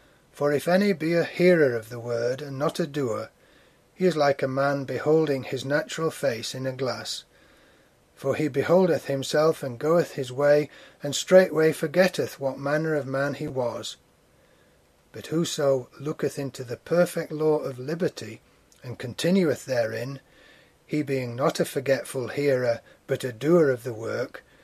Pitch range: 125-155 Hz